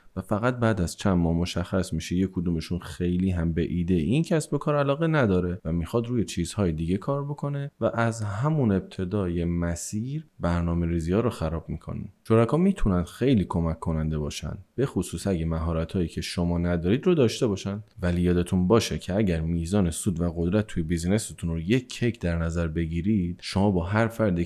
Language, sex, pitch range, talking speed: Persian, male, 85-110 Hz, 180 wpm